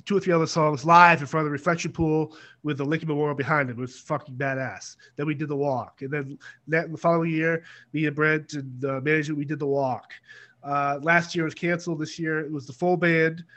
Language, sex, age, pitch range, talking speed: English, male, 30-49, 140-165 Hz, 235 wpm